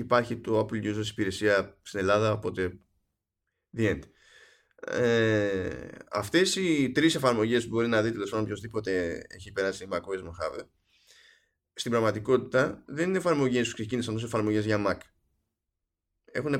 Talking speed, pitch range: 135 wpm, 100-130 Hz